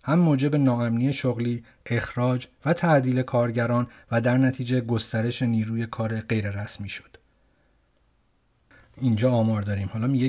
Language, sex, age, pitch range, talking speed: Persian, male, 30-49, 110-130 Hz, 130 wpm